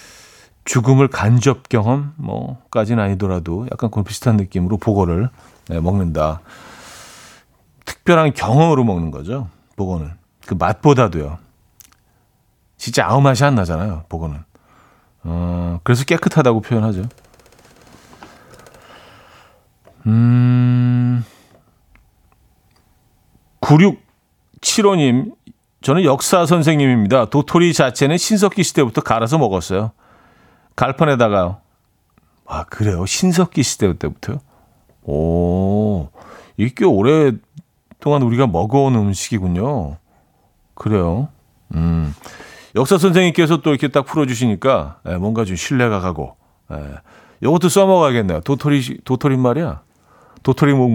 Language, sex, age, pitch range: Korean, male, 40-59, 95-140 Hz